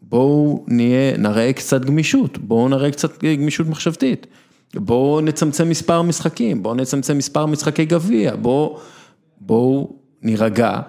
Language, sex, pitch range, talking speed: Hebrew, male, 120-170 Hz, 120 wpm